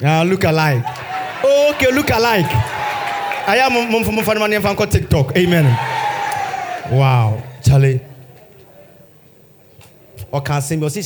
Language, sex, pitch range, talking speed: English, male, 125-160 Hz, 100 wpm